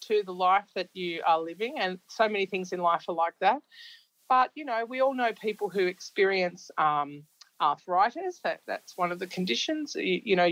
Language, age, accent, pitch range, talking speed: English, 40-59, Australian, 180-235 Hz, 195 wpm